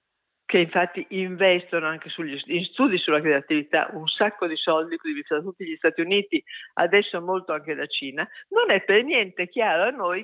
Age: 50-69